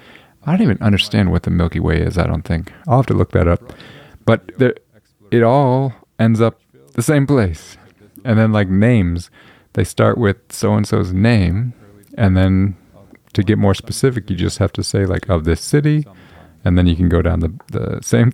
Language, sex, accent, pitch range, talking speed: English, male, American, 90-115 Hz, 195 wpm